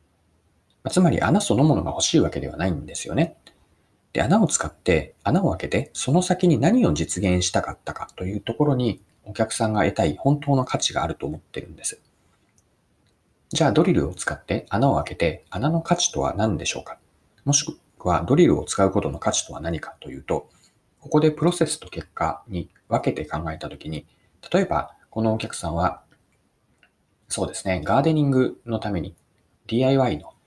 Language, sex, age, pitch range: Japanese, male, 40-59, 85-130 Hz